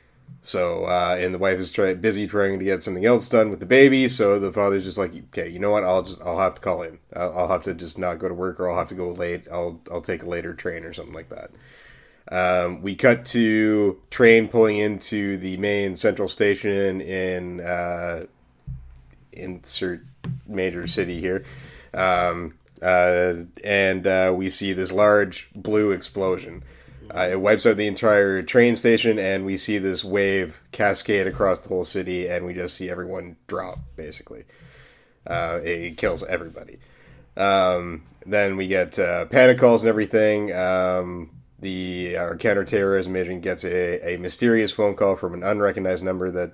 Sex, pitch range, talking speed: male, 90-105 Hz, 180 wpm